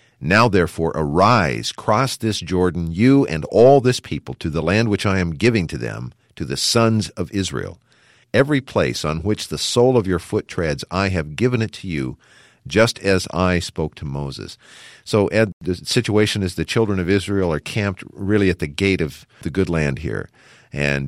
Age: 50-69